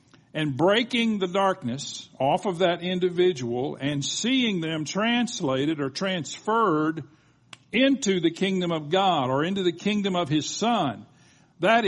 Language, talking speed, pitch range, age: English, 135 wpm, 140-205 Hz, 50-69